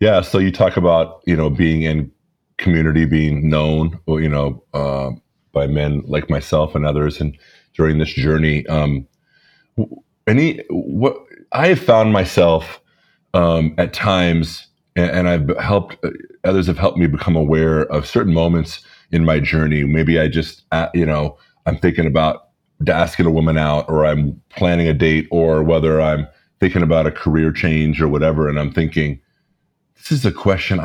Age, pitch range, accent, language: 30-49, 75-90 Hz, American, English